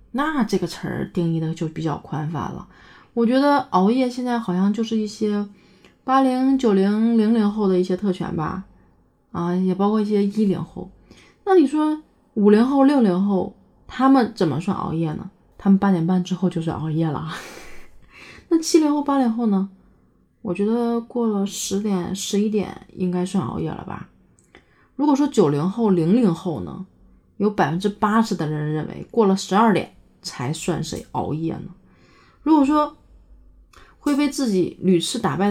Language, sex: Chinese, female